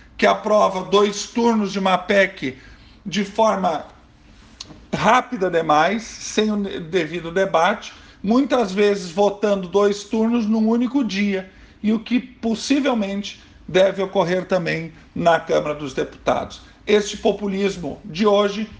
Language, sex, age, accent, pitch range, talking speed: Portuguese, male, 50-69, Brazilian, 170-210 Hz, 120 wpm